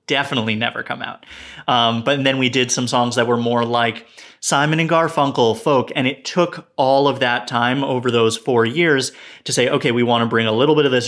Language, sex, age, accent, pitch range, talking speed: English, male, 30-49, American, 120-145 Hz, 225 wpm